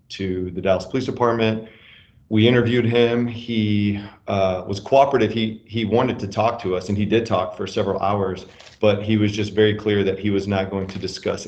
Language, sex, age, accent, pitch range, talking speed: English, male, 40-59, American, 95-110 Hz, 205 wpm